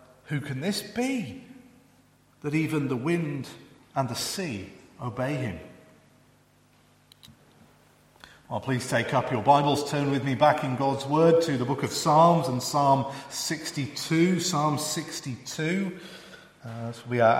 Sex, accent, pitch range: male, British, 120-155 Hz